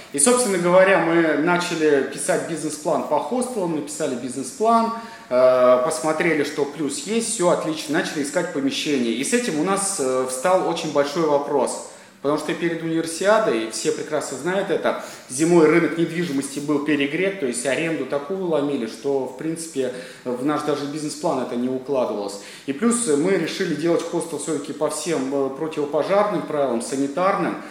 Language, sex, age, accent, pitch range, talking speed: Russian, male, 30-49, native, 140-175 Hz, 150 wpm